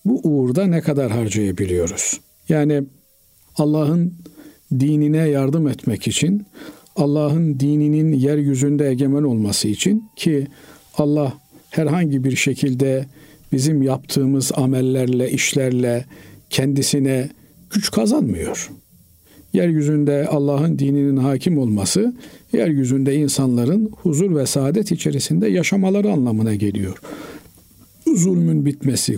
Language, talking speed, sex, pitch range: Turkish, 95 wpm, male, 130-165 Hz